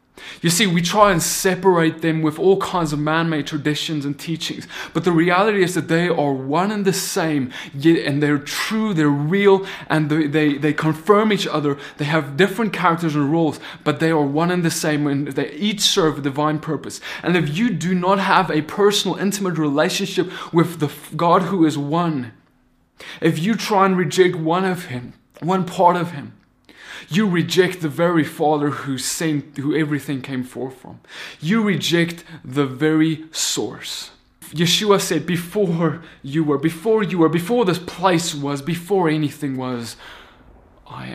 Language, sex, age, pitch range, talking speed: English, male, 20-39, 145-175 Hz, 175 wpm